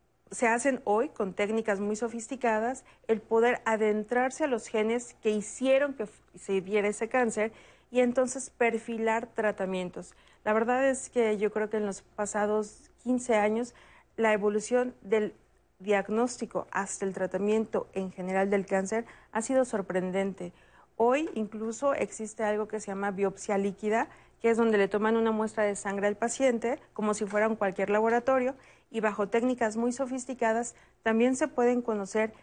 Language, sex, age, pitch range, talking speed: Spanish, female, 40-59, 205-240 Hz, 155 wpm